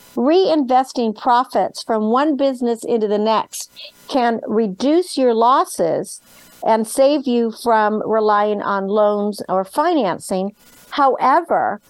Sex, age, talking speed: female, 50-69, 110 wpm